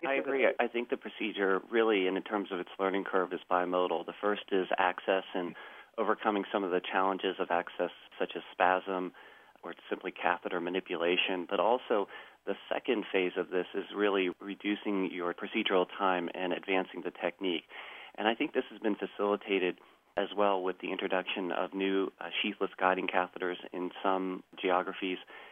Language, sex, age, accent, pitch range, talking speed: English, male, 40-59, American, 90-100 Hz, 165 wpm